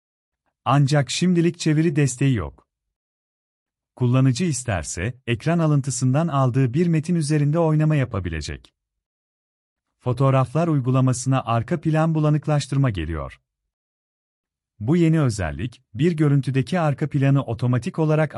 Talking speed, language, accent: 100 wpm, Turkish, native